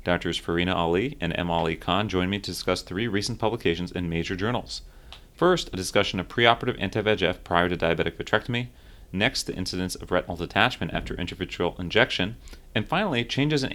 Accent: American